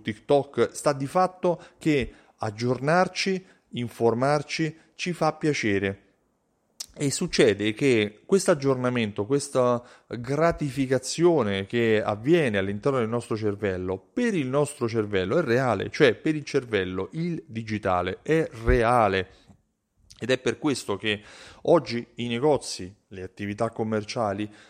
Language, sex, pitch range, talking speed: Italian, male, 110-160 Hz, 115 wpm